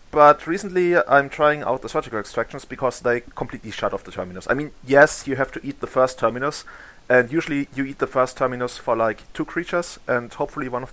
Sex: male